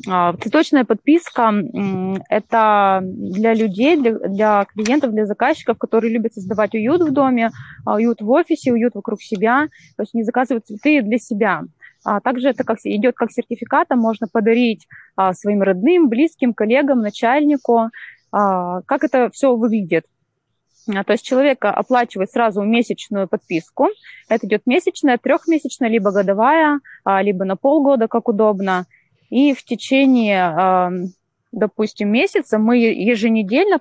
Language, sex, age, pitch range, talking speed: Russian, female, 20-39, 205-260 Hz, 125 wpm